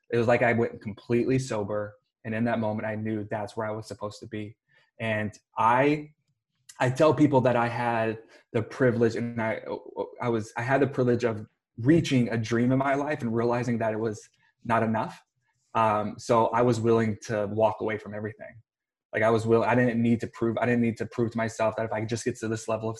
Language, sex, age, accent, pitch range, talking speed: English, male, 20-39, American, 110-125 Hz, 225 wpm